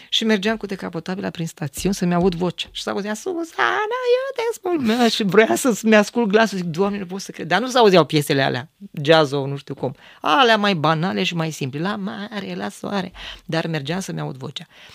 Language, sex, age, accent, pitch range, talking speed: Romanian, female, 20-39, native, 155-215 Hz, 195 wpm